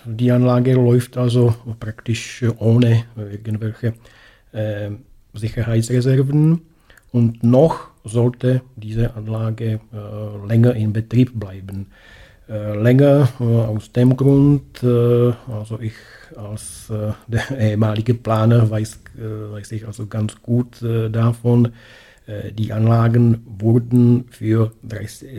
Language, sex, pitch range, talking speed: German, male, 110-120 Hz, 110 wpm